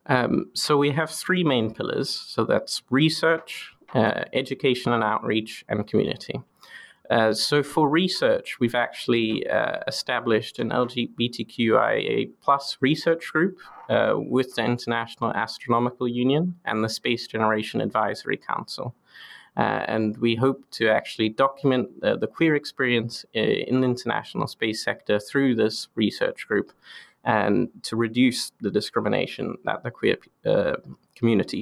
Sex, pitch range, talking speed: male, 110-135 Hz, 135 wpm